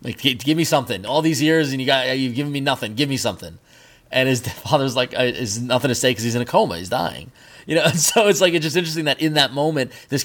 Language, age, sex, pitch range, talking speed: English, 20-39, male, 115-140 Hz, 270 wpm